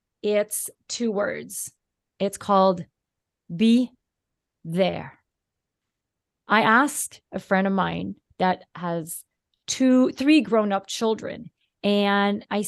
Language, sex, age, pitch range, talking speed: English, female, 30-49, 185-230 Hz, 105 wpm